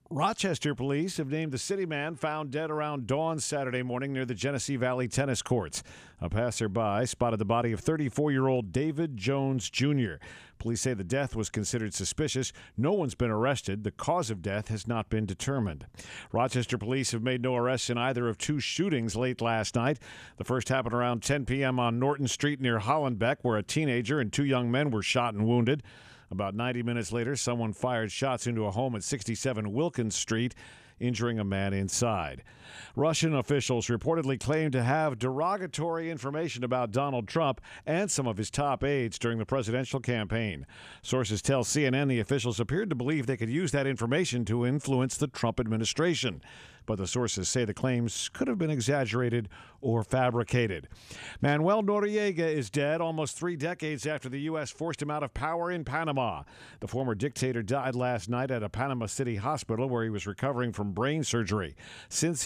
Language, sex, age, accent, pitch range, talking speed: English, male, 50-69, American, 115-145 Hz, 180 wpm